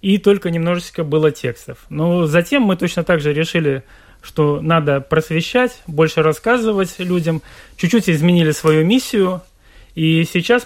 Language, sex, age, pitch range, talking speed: Russian, male, 30-49, 155-180 Hz, 135 wpm